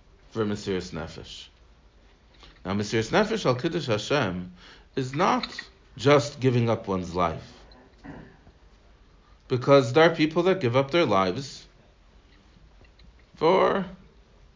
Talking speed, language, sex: 105 wpm, English, male